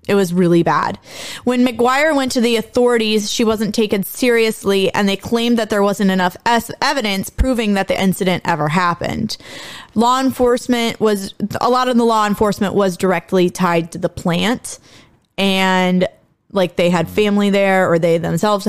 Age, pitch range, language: 20-39, 180-215 Hz, English